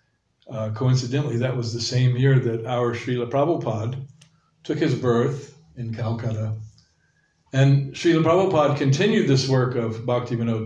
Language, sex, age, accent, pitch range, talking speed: English, male, 60-79, American, 115-130 Hz, 135 wpm